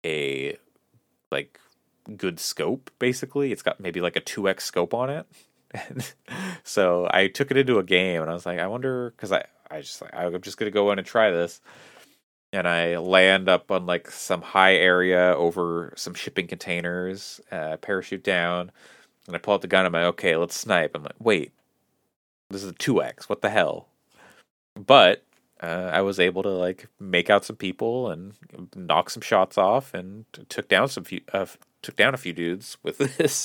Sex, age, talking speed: male, 30-49, 195 wpm